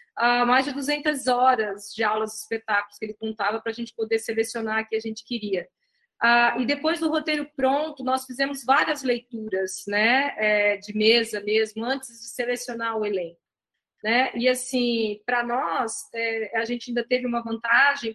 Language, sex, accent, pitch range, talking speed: Portuguese, female, Brazilian, 230-270 Hz, 175 wpm